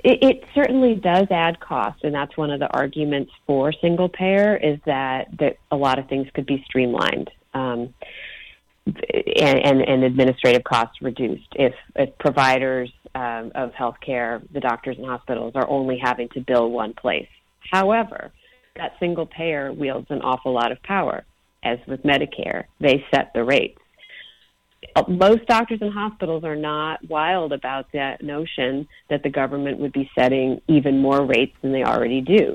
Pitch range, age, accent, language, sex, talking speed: 130-160 Hz, 40-59, American, English, female, 160 wpm